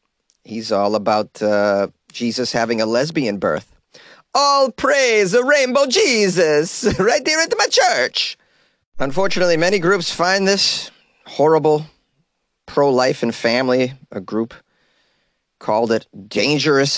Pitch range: 105-150 Hz